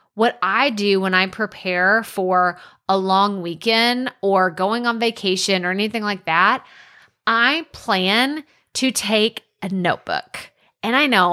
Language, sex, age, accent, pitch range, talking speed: English, female, 20-39, American, 185-245 Hz, 145 wpm